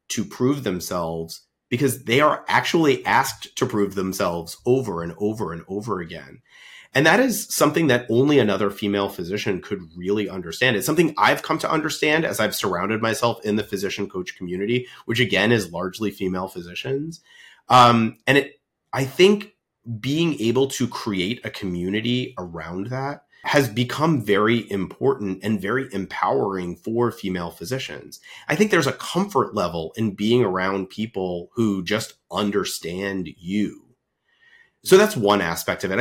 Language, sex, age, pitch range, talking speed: English, male, 30-49, 100-135 Hz, 155 wpm